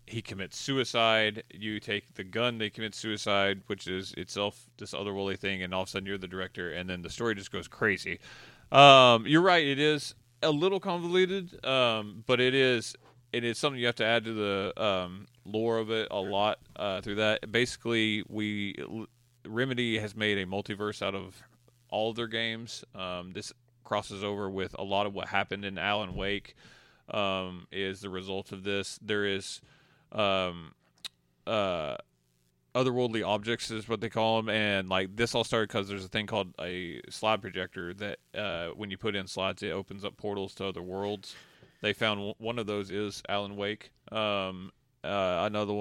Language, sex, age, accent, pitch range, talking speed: English, male, 30-49, American, 95-115 Hz, 185 wpm